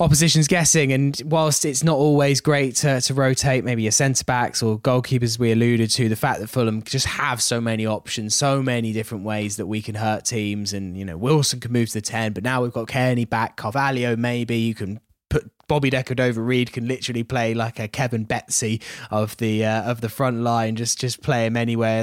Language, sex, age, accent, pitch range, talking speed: English, male, 10-29, British, 115-150 Hz, 220 wpm